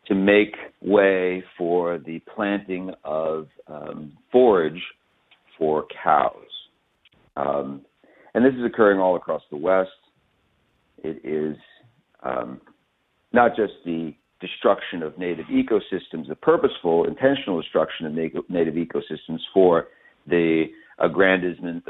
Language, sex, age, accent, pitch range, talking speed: English, male, 50-69, American, 80-95 Hz, 110 wpm